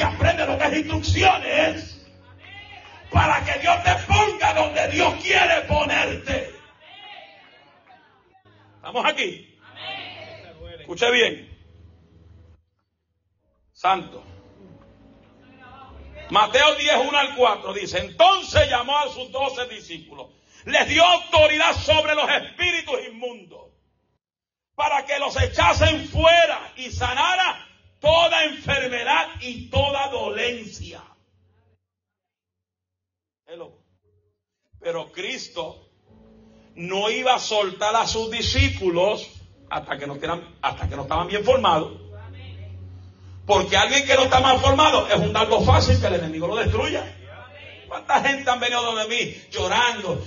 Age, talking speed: 40-59, 100 wpm